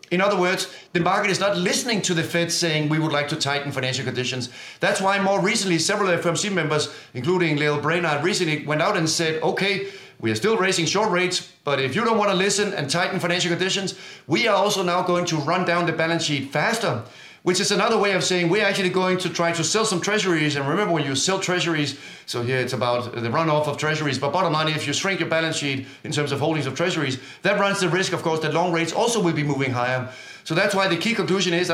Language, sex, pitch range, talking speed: English, male, 155-185 Hz, 245 wpm